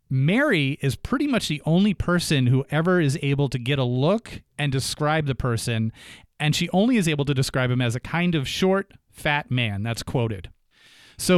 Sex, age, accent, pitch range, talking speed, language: male, 30-49, American, 125-175 Hz, 195 wpm, English